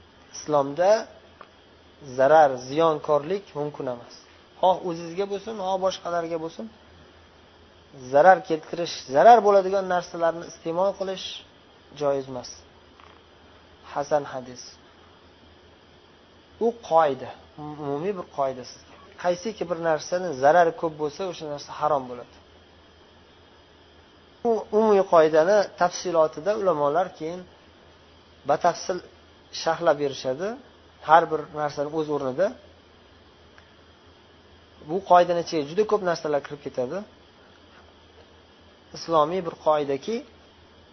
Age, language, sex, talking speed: 30-49, Bulgarian, male, 80 wpm